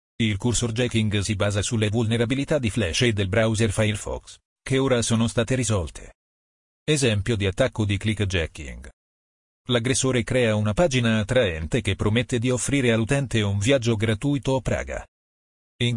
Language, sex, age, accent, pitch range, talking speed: Italian, male, 40-59, native, 105-125 Hz, 150 wpm